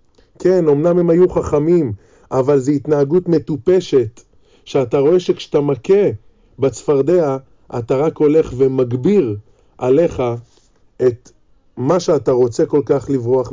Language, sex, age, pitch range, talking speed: Hebrew, male, 20-39, 120-155 Hz, 115 wpm